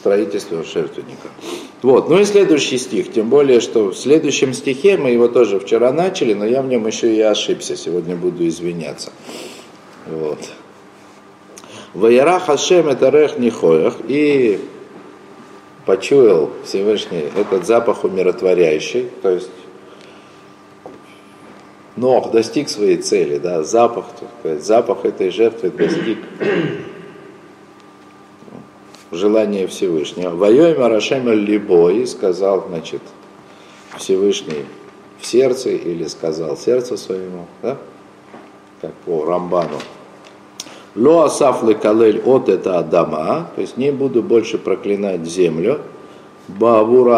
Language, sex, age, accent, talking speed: Russian, male, 50-69, native, 110 wpm